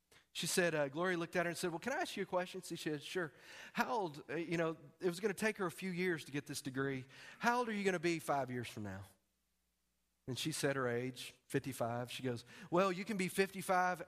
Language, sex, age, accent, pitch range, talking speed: English, male, 40-59, American, 120-185 Hz, 255 wpm